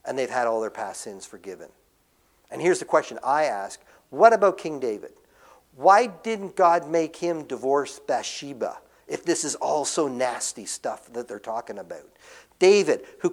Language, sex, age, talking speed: English, male, 50-69, 170 wpm